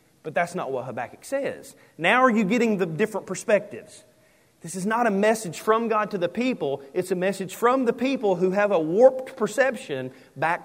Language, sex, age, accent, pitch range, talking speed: English, male, 40-59, American, 130-190 Hz, 195 wpm